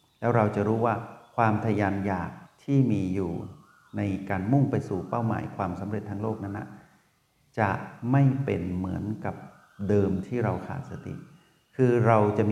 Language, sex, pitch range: Thai, male, 100-130 Hz